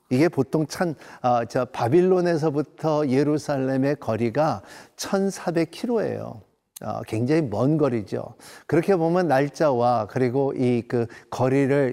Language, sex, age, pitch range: Korean, male, 50-69, 125-160 Hz